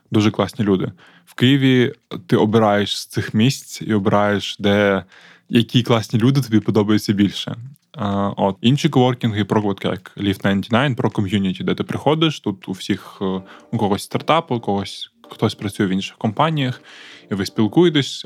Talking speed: 155 wpm